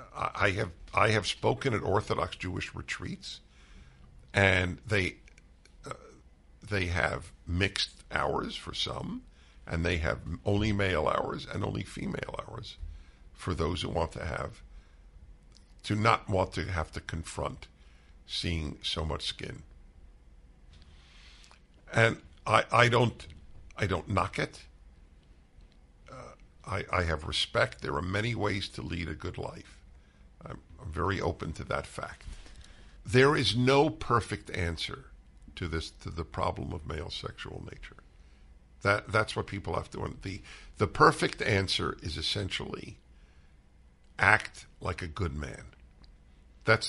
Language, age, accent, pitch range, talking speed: English, 50-69, American, 70-100 Hz, 135 wpm